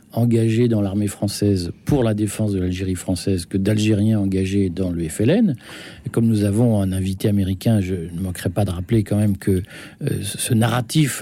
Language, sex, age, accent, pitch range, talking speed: French, male, 50-69, French, 100-125 Hz, 185 wpm